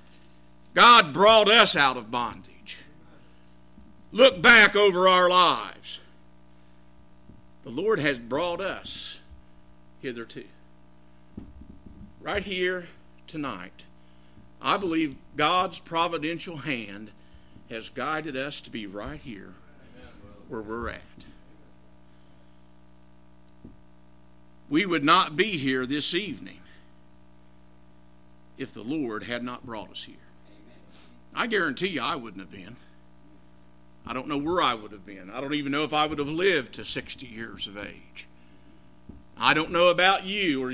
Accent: American